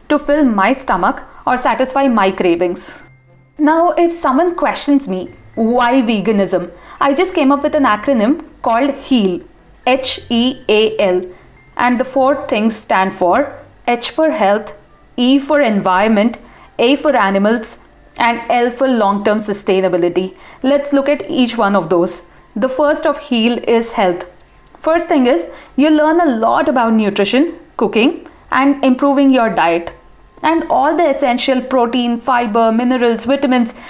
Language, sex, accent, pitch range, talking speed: English, female, Indian, 215-285 Hz, 140 wpm